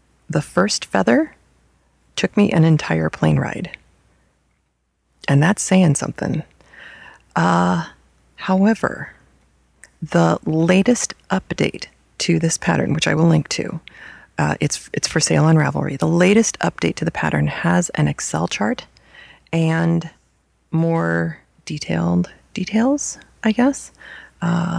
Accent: American